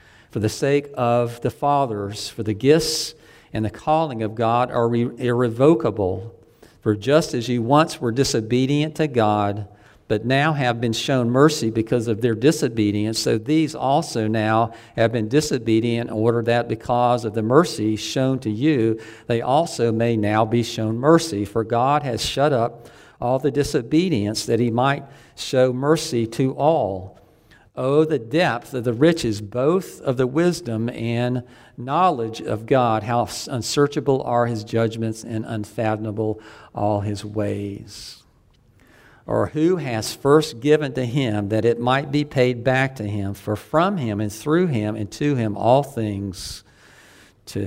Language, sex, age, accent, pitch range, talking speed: English, male, 50-69, American, 110-135 Hz, 155 wpm